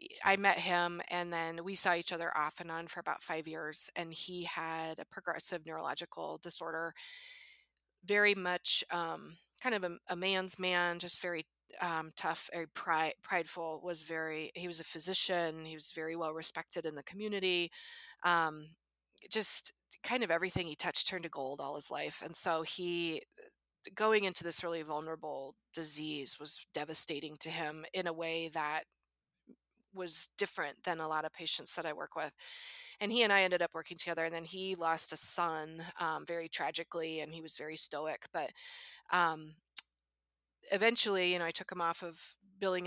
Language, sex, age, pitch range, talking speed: English, female, 20-39, 155-180 Hz, 175 wpm